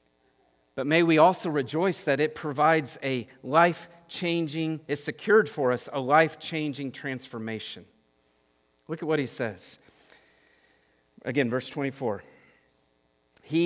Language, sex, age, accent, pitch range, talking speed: English, male, 40-59, American, 120-170 Hz, 115 wpm